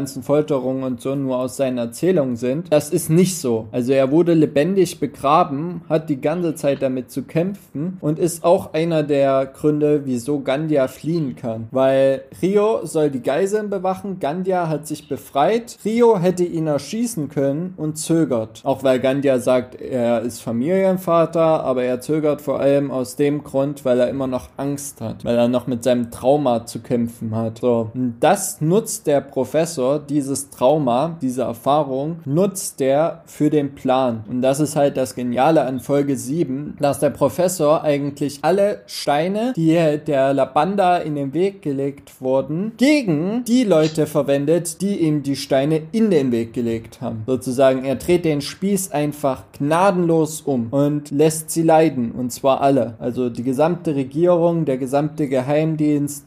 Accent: German